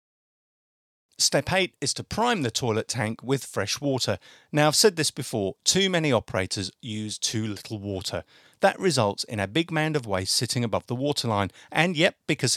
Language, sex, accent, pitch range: English, male, British, 110-150 Hz